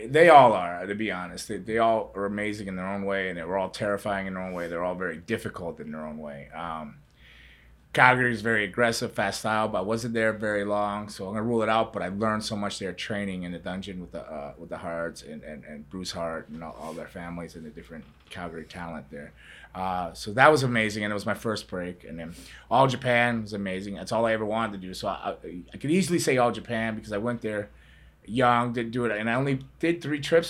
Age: 30-49